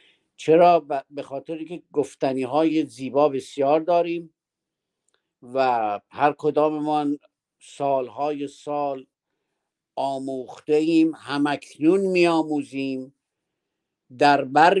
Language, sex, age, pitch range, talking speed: Persian, male, 50-69, 125-150 Hz, 80 wpm